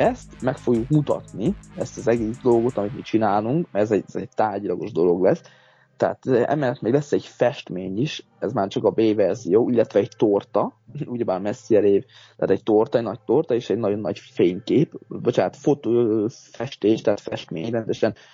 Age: 20-39